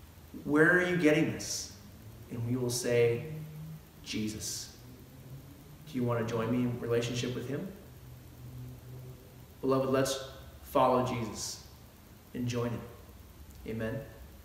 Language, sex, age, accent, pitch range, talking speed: English, male, 30-49, American, 120-150 Hz, 115 wpm